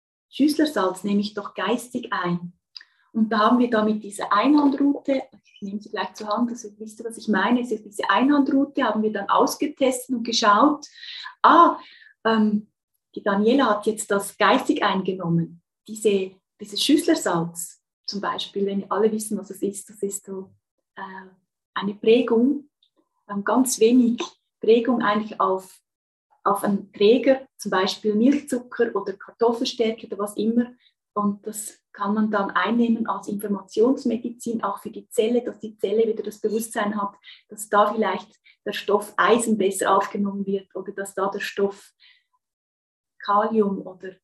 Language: German